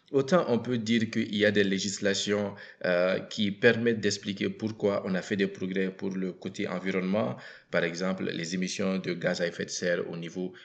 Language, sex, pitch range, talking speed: French, male, 95-110 Hz, 195 wpm